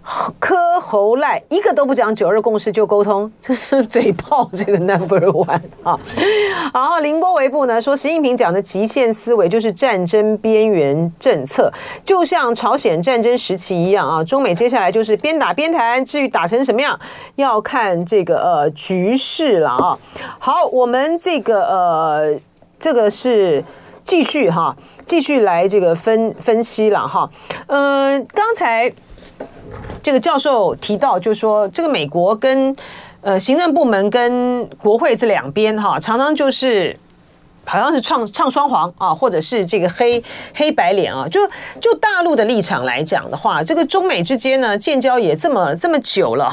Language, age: Chinese, 40-59